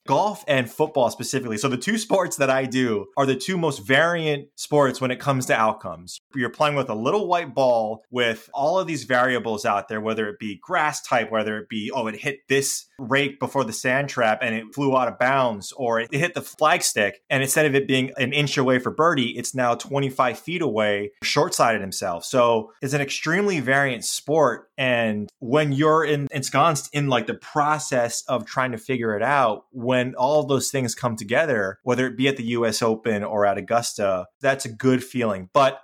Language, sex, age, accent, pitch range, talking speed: English, male, 20-39, American, 115-140 Hz, 210 wpm